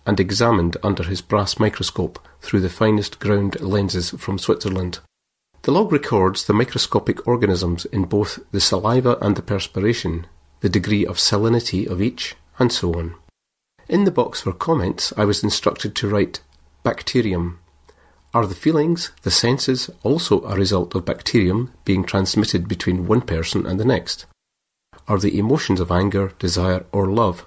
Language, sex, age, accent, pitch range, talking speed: English, male, 40-59, British, 90-110 Hz, 155 wpm